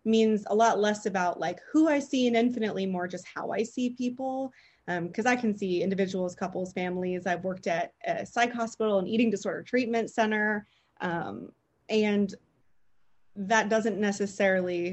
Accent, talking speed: American, 165 wpm